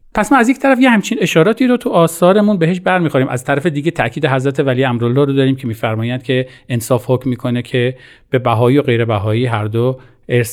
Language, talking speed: Persian, 205 wpm